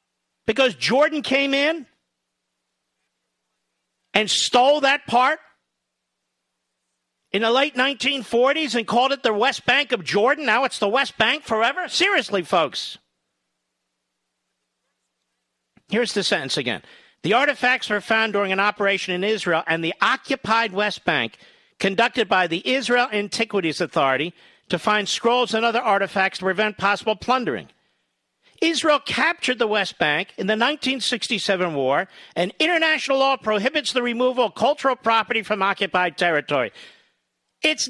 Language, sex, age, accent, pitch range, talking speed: English, male, 50-69, American, 180-265 Hz, 135 wpm